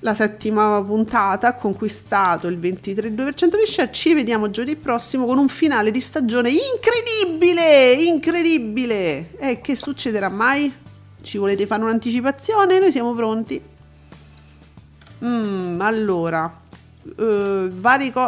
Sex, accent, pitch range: female, native, 205-255 Hz